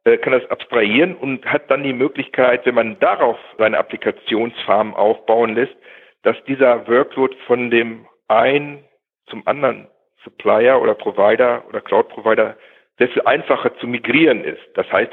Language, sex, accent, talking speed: German, male, German, 145 wpm